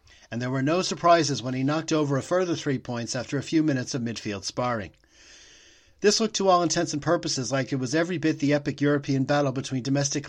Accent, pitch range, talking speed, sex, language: American, 125-155 Hz, 220 wpm, male, English